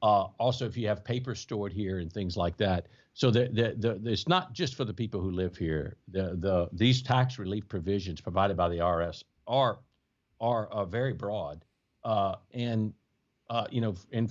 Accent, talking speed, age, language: American, 195 wpm, 60-79, English